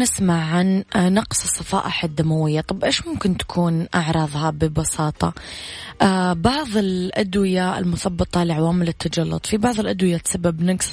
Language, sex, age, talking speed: Arabic, female, 20-39, 115 wpm